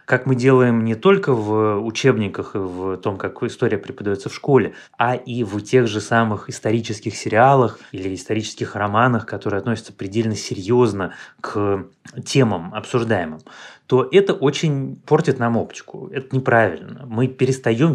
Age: 20-39